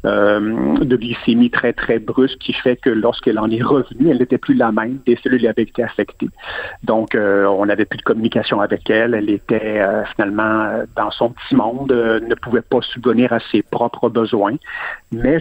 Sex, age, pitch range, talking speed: male, 50-69, 110-130 Hz, 200 wpm